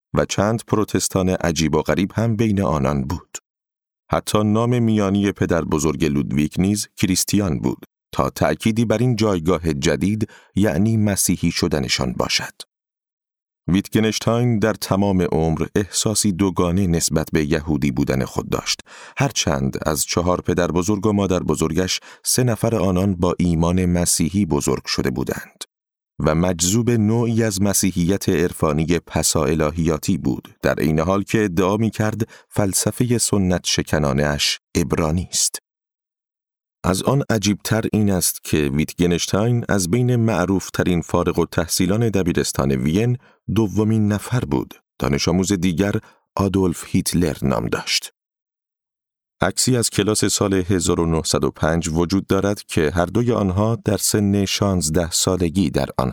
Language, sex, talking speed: Persian, male, 130 wpm